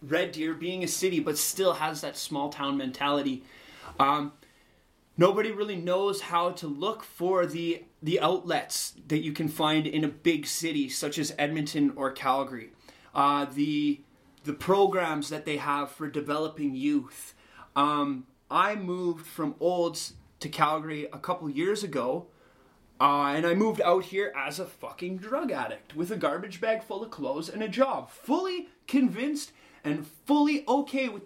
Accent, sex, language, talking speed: American, male, English, 160 wpm